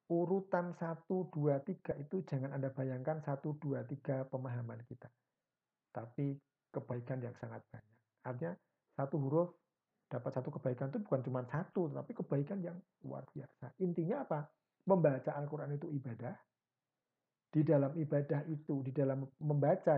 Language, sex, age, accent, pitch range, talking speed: Indonesian, male, 50-69, native, 130-165 Hz, 140 wpm